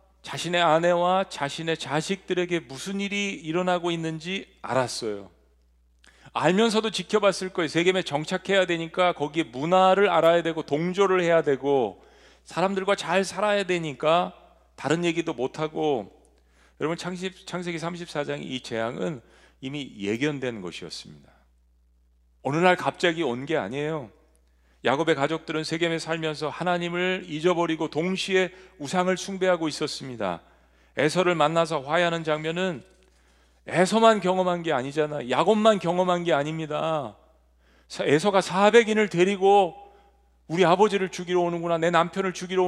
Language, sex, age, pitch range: Korean, male, 40-59, 145-185 Hz